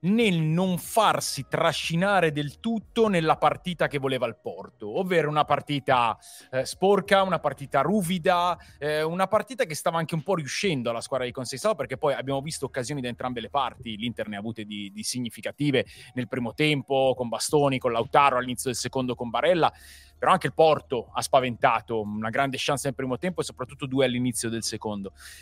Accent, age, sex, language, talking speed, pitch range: native, 30-49, male, Italian, 185 wpm, 125-160 Hz